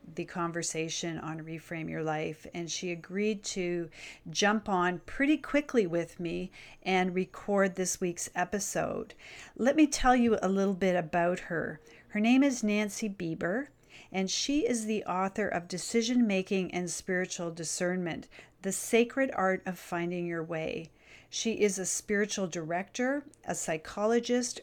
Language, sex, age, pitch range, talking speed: English, female, 40-59, 175-220 Hz, 145 wpm